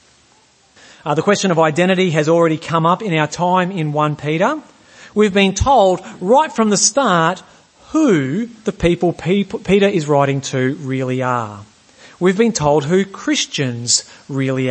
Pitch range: 160-230 Hz